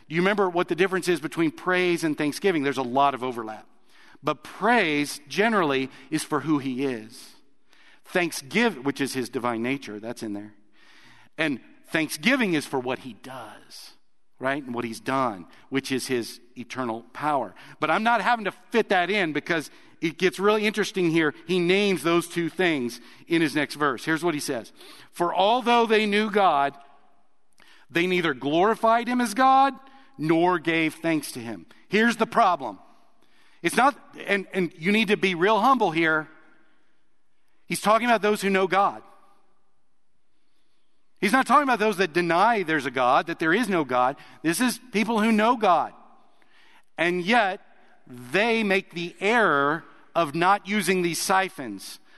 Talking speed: 165 wpm